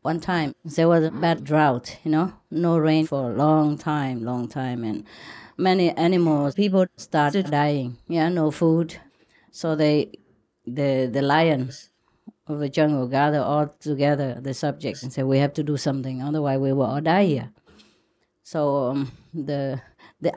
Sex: female